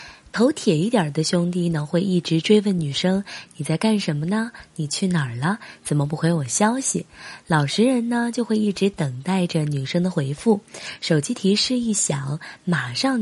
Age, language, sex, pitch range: 20-39, Chinese, female, 155-215 Hz